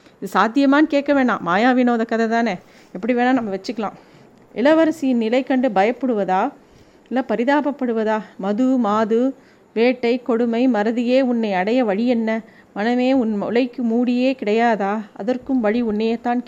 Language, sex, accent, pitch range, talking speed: Tamil, female, native, 215-255 Hz, 130 wpm